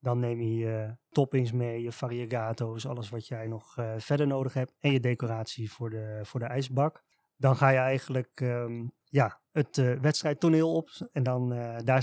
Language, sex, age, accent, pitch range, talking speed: Dutch, male, 20-39, Dutch, 120-140 Hz, 170 wpm